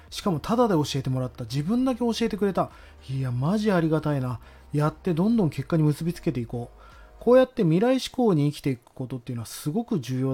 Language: Japanese